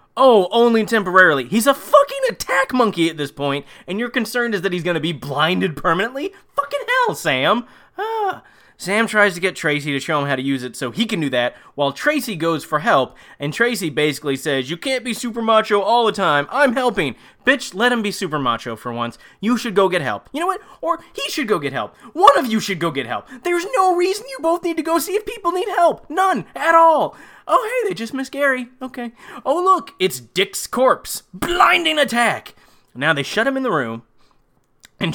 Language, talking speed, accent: English, 220 wpm, American